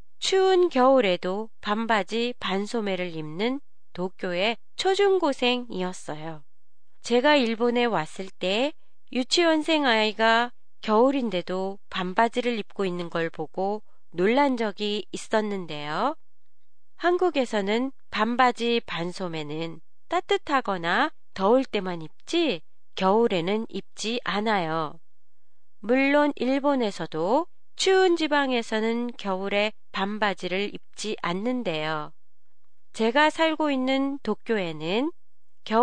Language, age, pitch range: Japanese, 30-49, 190-265 Hz